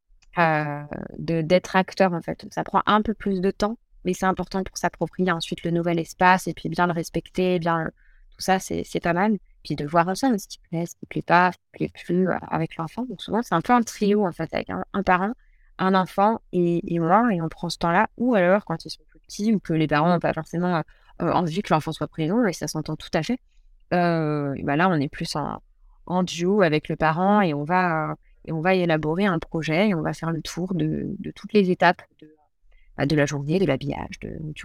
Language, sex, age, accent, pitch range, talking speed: French, female, 20-39, French, 155-190 Hz, 245 wpm